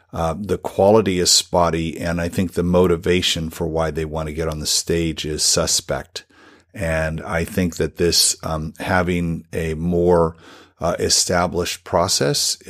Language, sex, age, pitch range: English, male, 50-69, 80-100 Hz